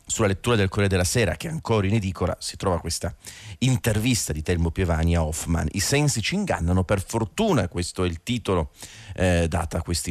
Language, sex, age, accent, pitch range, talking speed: Italian, male, 40-59, native, 85-105 Hz, 195 wpm